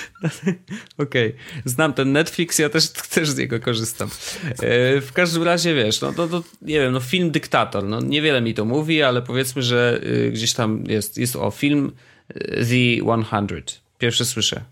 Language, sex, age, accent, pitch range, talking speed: Polish, male, 30-49, native, 110-140 Hz, 165 wpm